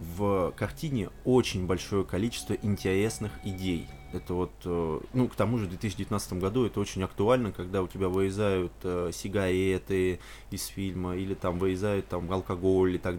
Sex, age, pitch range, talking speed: male, 20-39, 90-105 Hz, 150 wpm